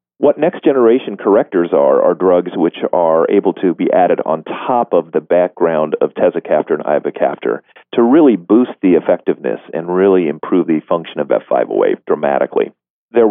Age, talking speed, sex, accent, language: 40-59, 165 wpm, male, American, English